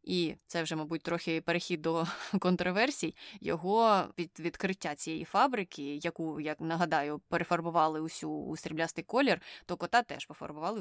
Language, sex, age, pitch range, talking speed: Ukrainian, female, 20-39, 165-195 Hz, 140 wpm